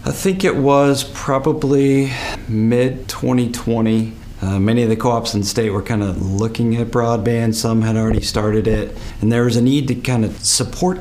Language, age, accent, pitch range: English, 40-59, American, 95-115 Hz